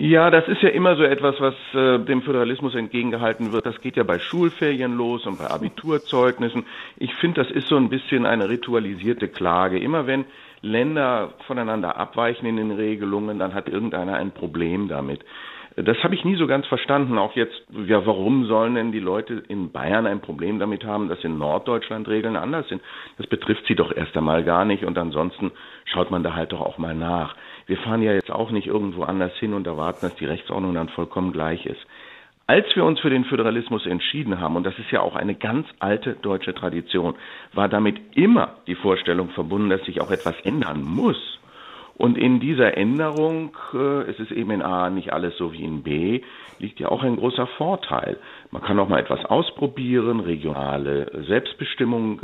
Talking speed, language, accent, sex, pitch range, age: 195 wpm, German, German, male, 90-125 Hz, 50-69